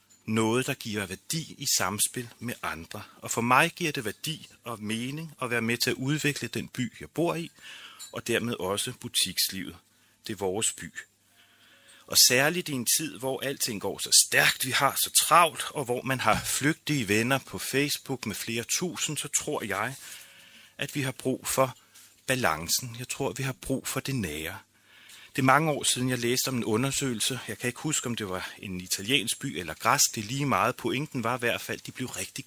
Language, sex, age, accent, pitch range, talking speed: Danish, male, 30-49, native, 110-140 Hz, 205 wpm